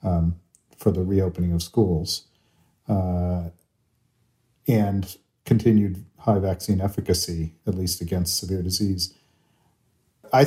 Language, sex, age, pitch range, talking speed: English, male, 40-59, 90-110 Hz, 105 wpm